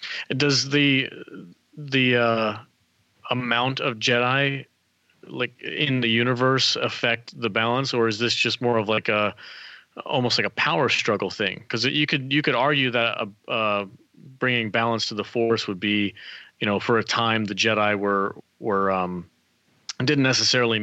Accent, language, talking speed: American, English, 160 wpm